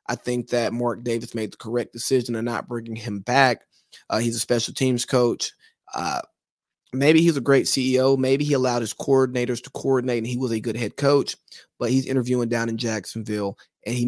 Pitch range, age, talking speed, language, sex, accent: 120-140 Hz, 20-39, 205 wpm, English, male, American